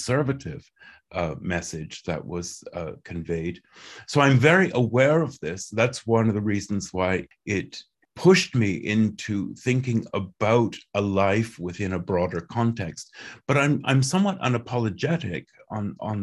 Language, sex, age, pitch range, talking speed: French, male, 50-69, 95-115 Hz, 140 wpm